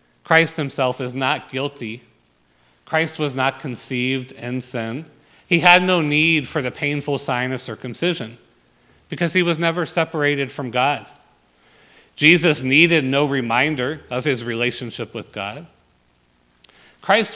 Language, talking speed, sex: English, 130 wpm, male